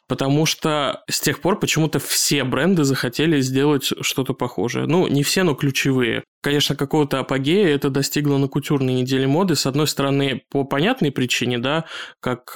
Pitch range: 130-150 Hz